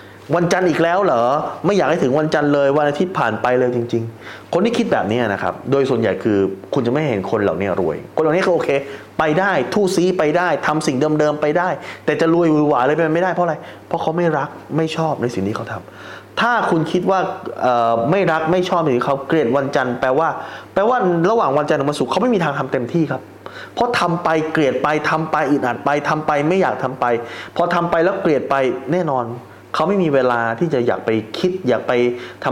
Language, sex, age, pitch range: Thai, male, 20-39, 120-160 Hz